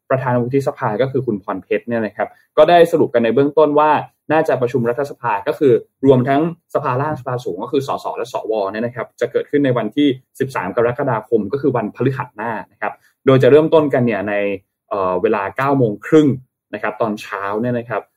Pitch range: 125-165 Hz